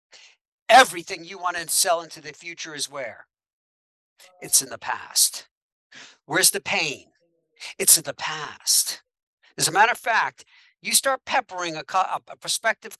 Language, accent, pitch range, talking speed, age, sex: English, American, 155-205 Hz, 150 wpm, 60-79, male